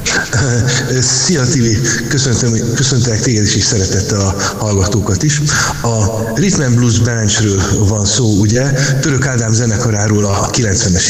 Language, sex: Hungarian, male